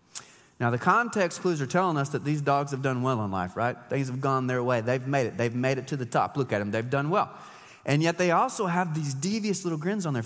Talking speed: 275 wpm